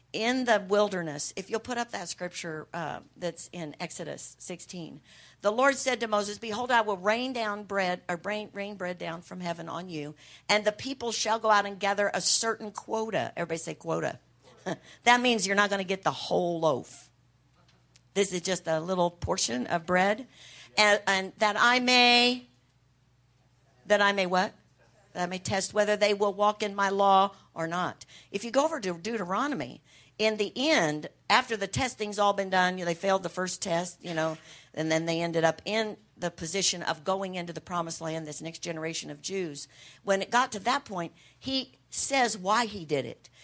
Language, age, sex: English, 50-69, female